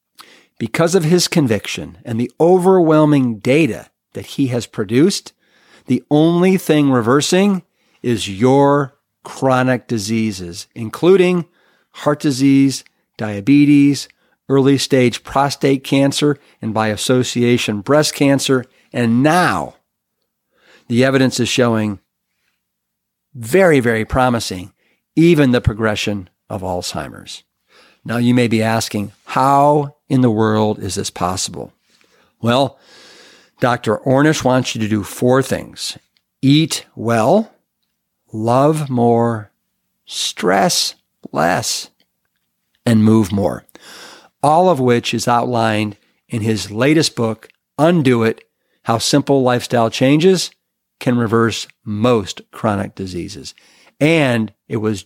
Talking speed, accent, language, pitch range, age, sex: 110 wpm, American, English, 110-145 Hz, 50-69, male